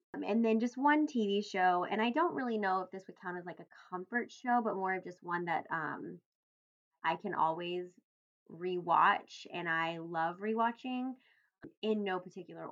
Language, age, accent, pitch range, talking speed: English, 20-39, American, 170-215 Hz, 190 wpm